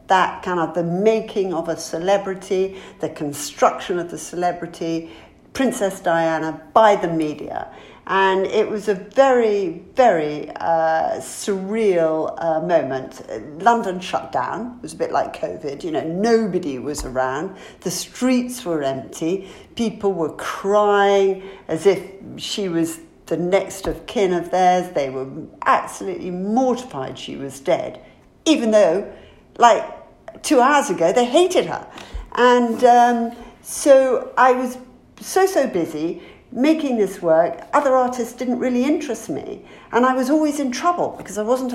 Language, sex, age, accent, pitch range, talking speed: English, female, 50-69, British, 170-245 Hz, 145 wpm